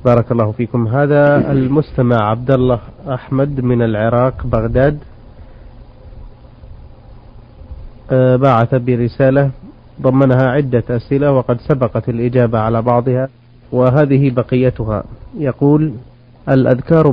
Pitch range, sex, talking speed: 120-135 Hz, male, 90 wpm